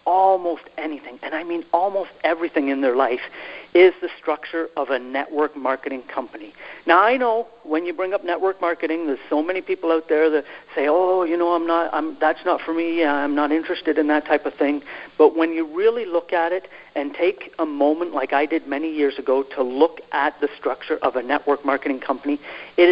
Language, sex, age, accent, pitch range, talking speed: English, male, 50-69, American, 150-205 Hz, 210 wpm